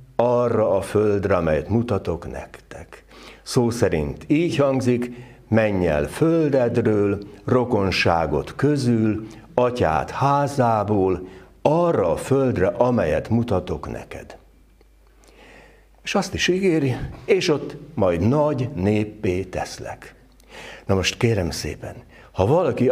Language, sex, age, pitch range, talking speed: Hungarian, male, 60-79, 100-135 Hz, 100 wpm